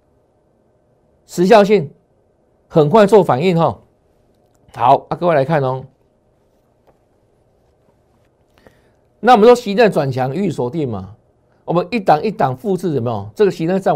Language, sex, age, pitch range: Chinese, male, 50-69, 130-195 Hz